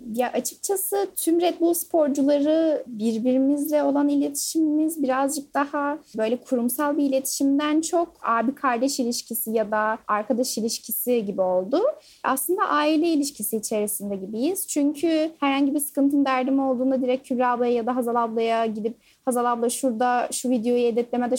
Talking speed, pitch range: 140 wpm, 225-290 Hz